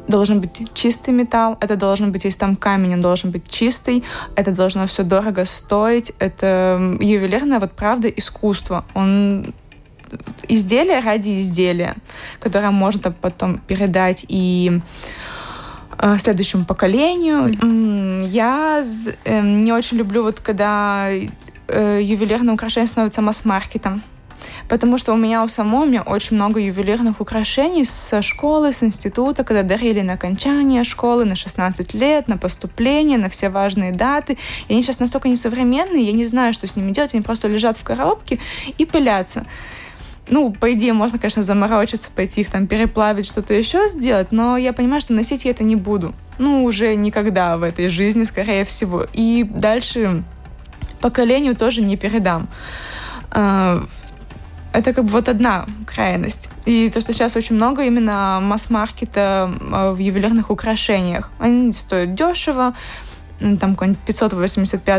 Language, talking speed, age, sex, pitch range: Russian, 140 wpm, 20-39, female, 195-235 Hz